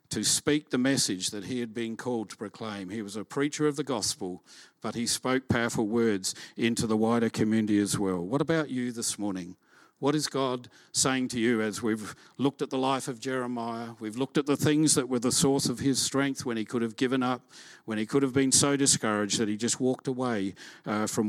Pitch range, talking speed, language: 110-135 Hz, 225 wpm, English